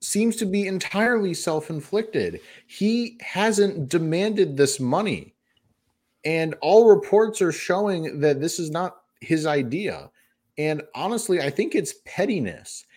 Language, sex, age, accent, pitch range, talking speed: English, male, 30-49, American, 125-180 Hz, 125 wpm